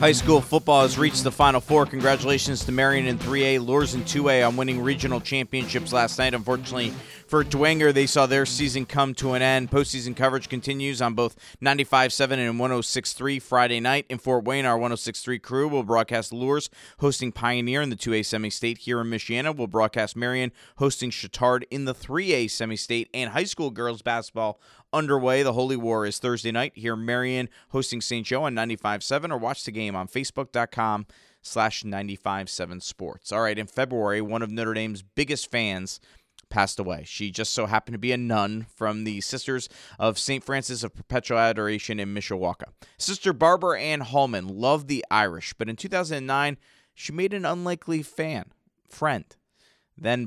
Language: English